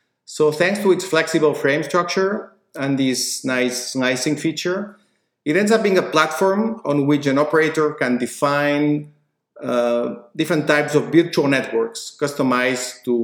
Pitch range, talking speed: 130-175 Hz, 145 wpm